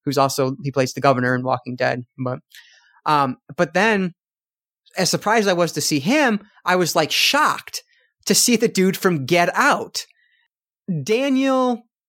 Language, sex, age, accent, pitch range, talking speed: English, male, 30-49, American, 155-220 Hz, 165 wpm